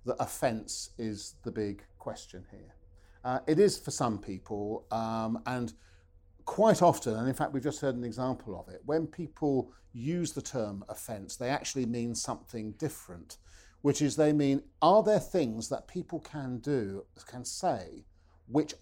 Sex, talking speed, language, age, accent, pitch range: male, 165 wpm, English, 50-69, British, 105-140 Hz